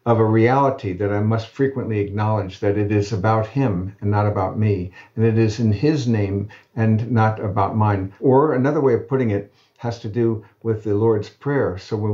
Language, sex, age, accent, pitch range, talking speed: English, male, 60-79, American, 100-130 Hz, 210 wpm